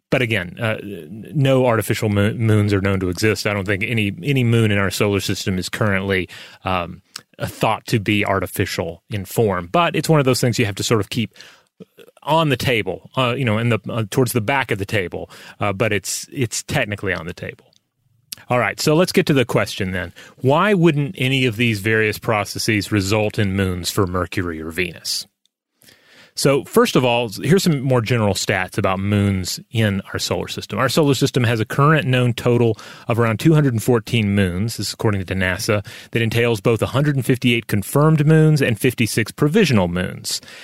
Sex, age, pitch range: male, 30-49, 100-130 Hz